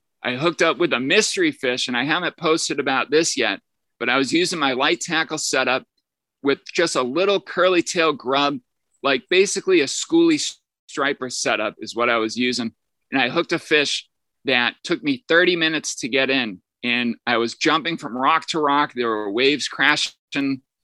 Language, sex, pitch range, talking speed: English, male, 125-160 Hz, 185 wpm